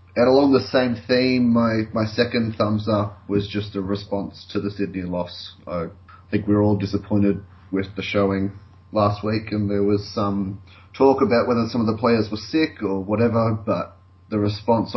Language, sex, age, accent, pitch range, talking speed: English, male, 30-49, Australian, 95-110 Hz, 190 wpm